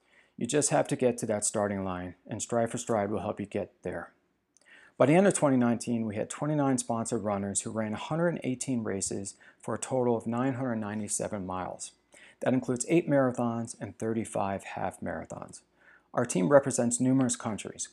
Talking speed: 170 wpm